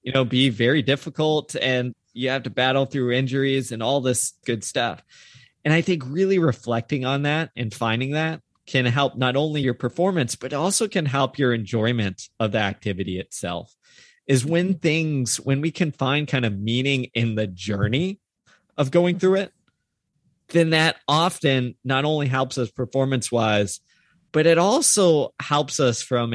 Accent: American